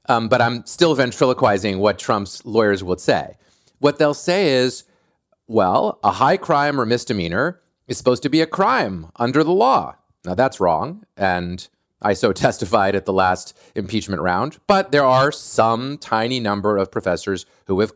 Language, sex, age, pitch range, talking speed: English, male, 30-49, 100-140 Hz, 170 wpm